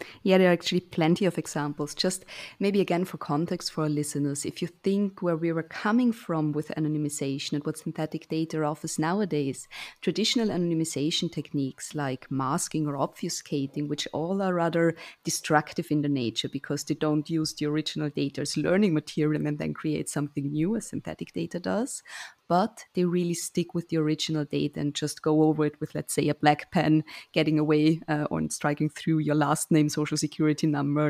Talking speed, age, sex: 185 wpm, 20-39, female